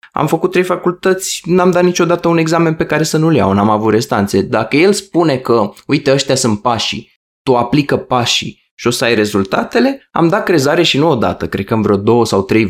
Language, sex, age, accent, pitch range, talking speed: Romanian, male, 20-39, native, 110-145 Hz, 215 wpm